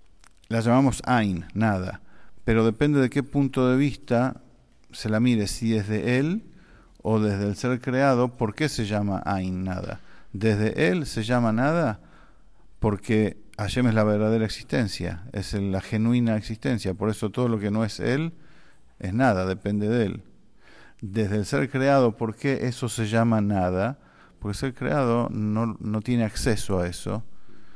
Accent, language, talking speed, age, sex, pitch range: Argentinian, English, 165 wpm, 50-69, male, 105-130 Hz